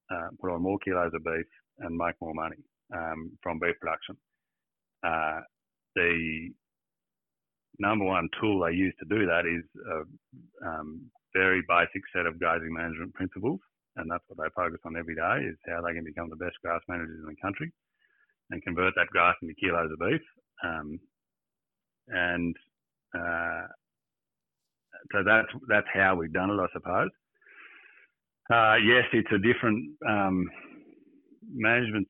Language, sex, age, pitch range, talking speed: English, male, 30-49, 85-95 Hz, 155 wpm